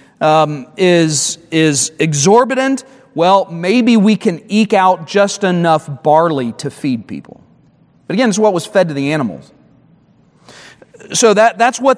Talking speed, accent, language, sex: 145 wpm, American, English, male